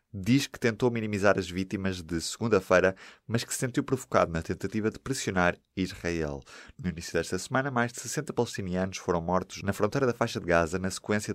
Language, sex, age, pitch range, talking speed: Portuguese, male, 20-39, 85-110 Hz, 190 wpm